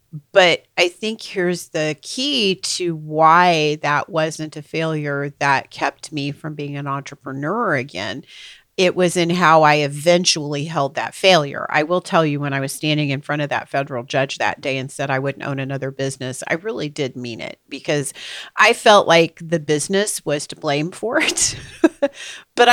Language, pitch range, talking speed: English, 145-170 Hz, 180 wpm